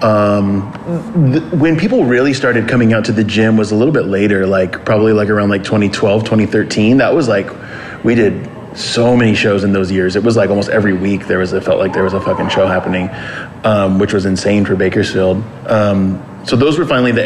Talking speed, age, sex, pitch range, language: 215 wpm, 20-39, male, 100-120 Hz, English